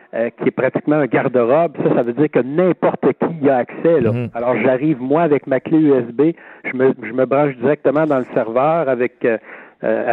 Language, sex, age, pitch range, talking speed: French, male, 60-79, 125-155 Hz, 200 wpm